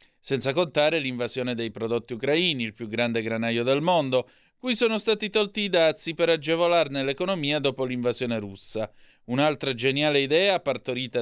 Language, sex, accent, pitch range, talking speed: Italian, male, native, 115-165 Hz, 150 wpm